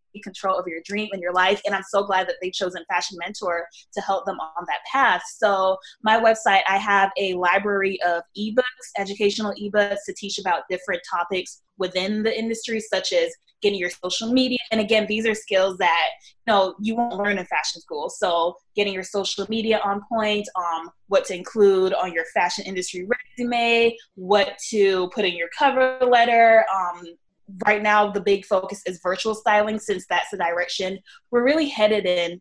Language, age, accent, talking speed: English, 20-39, American, 185 wpm